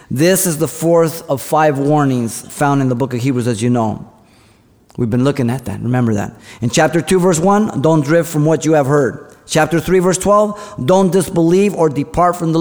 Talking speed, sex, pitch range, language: 215 wpm, male, 130-175 Hz, English